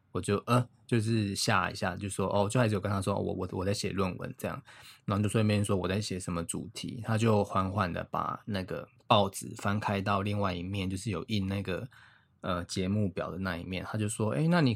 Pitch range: 95-115 Hz